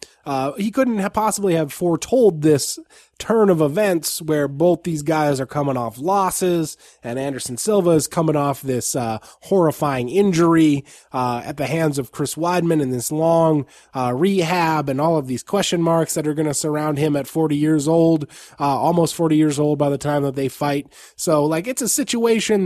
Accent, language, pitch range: American, English, 135-165 Hz